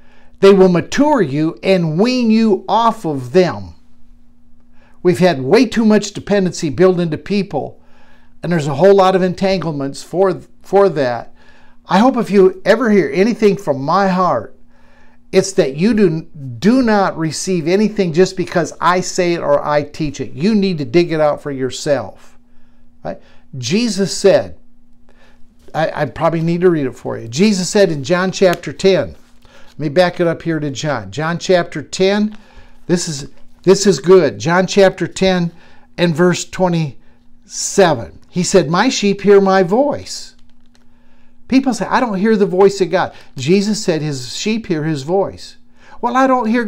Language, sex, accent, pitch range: English, male, American, 145-195 Hz